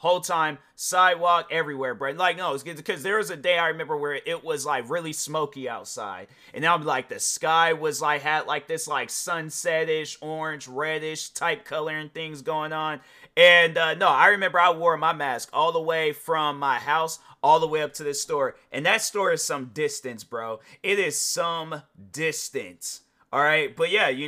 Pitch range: 135-180 Hz